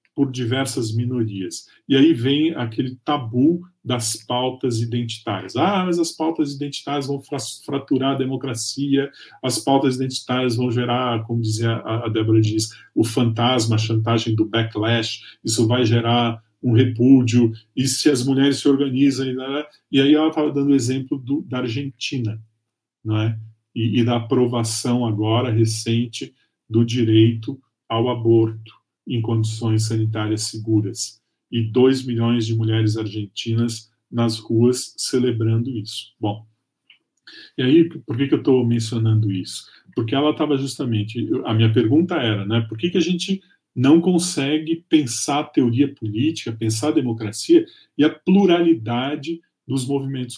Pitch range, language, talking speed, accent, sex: 115-140 Hz, Portuguese, 145 wpm, Brazilian, male